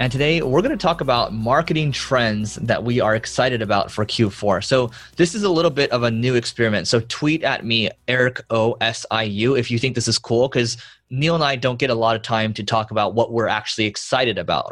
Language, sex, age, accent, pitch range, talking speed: English, male, 20-39, American, 110-135 Hz, 240 wpm